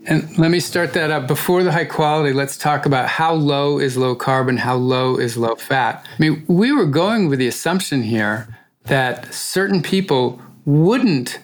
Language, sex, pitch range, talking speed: English, male, 125-160 Hz, 190 wpm